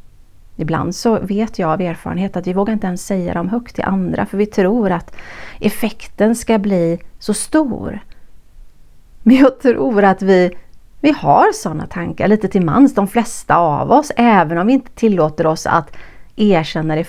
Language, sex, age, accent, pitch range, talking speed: Swedish, female, 30-49, native, 165-230 Hz, 175 wpm